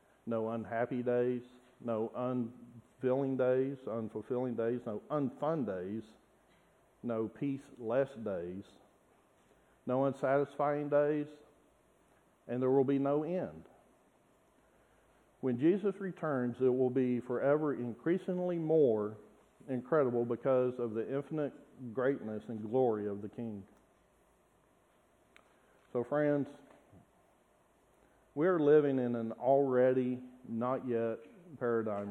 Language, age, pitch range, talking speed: English, 50-69, 115-140 Hz, 100 wpm